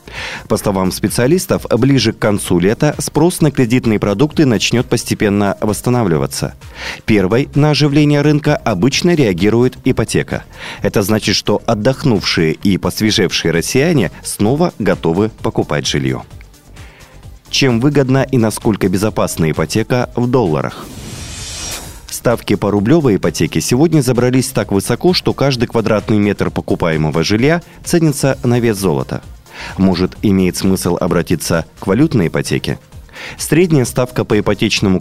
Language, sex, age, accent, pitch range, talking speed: Russian, male, 30-49, native, 95-135 Hz, 120 wpm